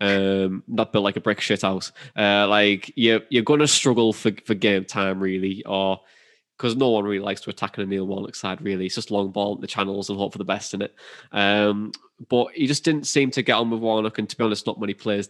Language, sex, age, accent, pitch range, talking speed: English, male, 10-29, British, 100-115 Hz, 260 wpm